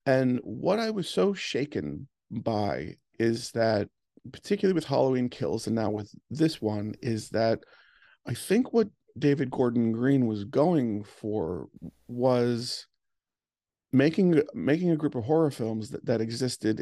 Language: English